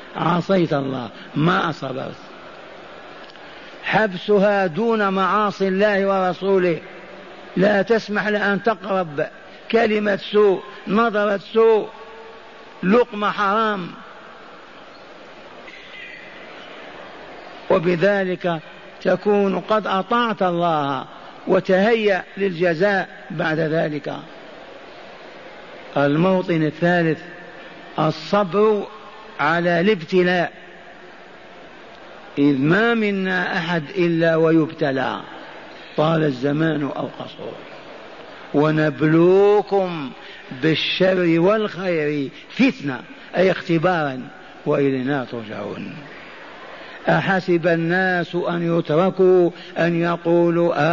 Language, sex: Arabic, male